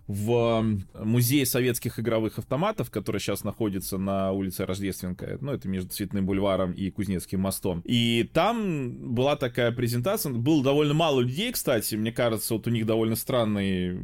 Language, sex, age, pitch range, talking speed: Russian, male, 20-39, 95-125 Hz, 155 wpm